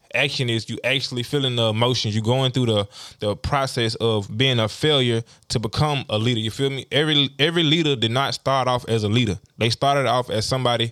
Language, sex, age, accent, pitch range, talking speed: English, male, 20-39, American, 110-130 Hz, 215 wpm